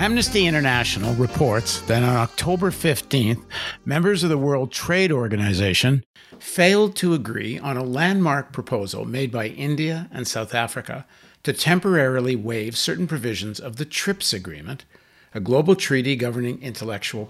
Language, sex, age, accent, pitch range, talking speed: English, male, 60-79, American, 120-170 Hz, 140 wpm